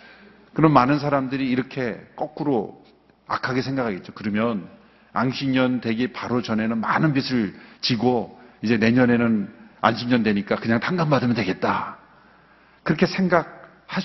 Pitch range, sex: 120-190 Hz, male